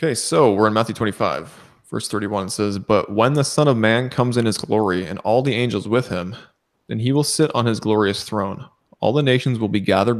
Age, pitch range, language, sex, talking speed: 20-39, 100-125 Hz, English, male, 235 wpm